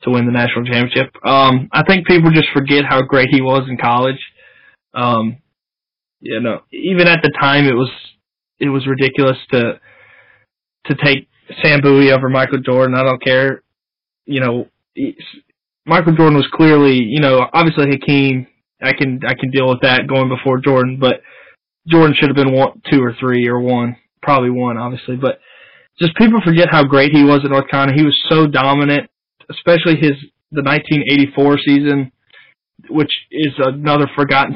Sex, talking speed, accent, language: male, 170 wpm, American, English